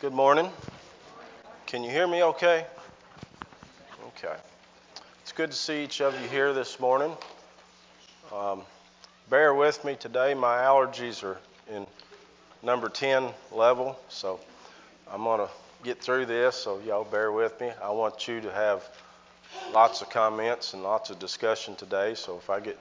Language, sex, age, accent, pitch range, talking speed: English, male, 40-59, American, 100-125 Hz, 155 wpm